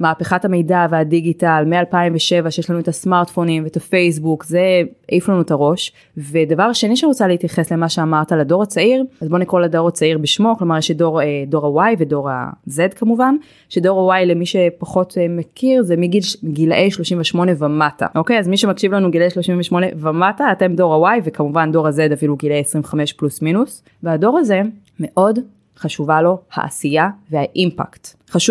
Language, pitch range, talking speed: Hebrew, 155-195 Hz, 145 wpm